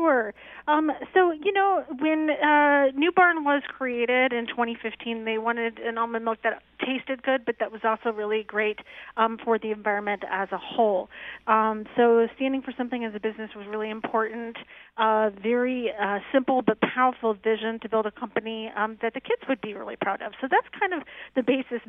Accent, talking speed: American, 195 wpm